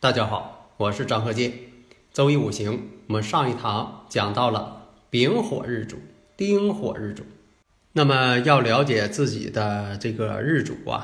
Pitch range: 110-145 Hz